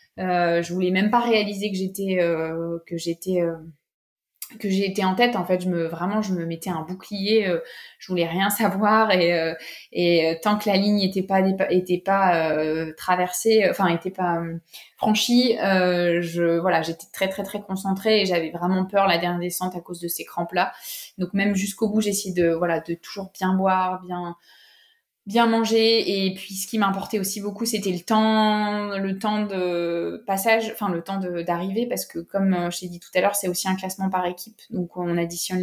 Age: 20-39